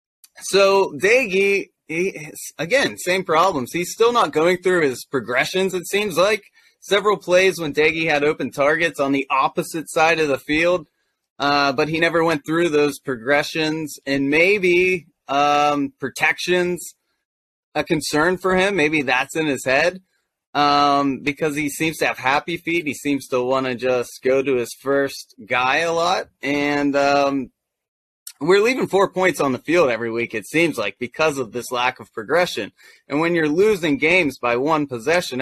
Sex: male